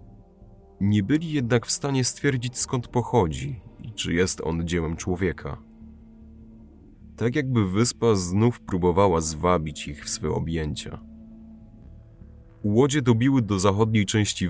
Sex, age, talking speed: male, 30-49, 120 wpm